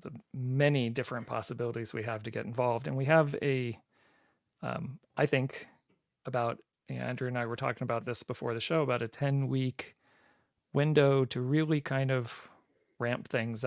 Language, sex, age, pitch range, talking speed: English, male, 40-59, 115-140 Hz, 175 wpm